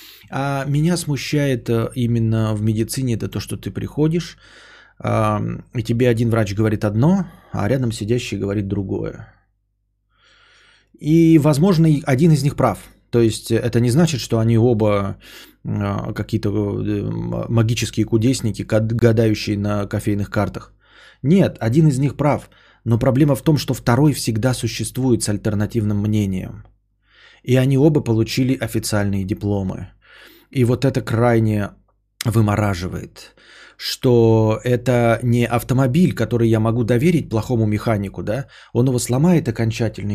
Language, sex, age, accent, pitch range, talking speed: Russian, male, 20-39, native, 105-135 Hz, 125 wpm